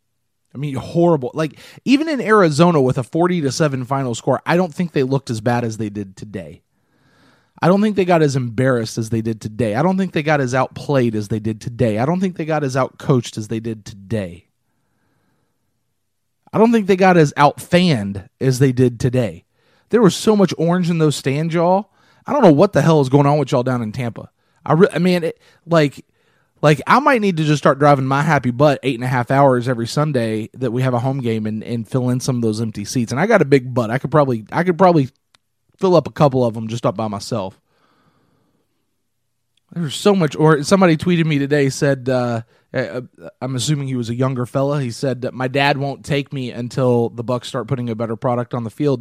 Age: 30-49